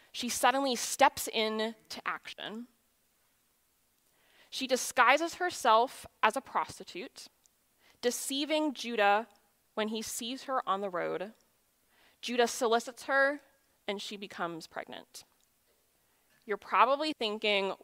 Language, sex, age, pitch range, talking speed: English, female, 20-39, 205-260 Hz, 105 wpm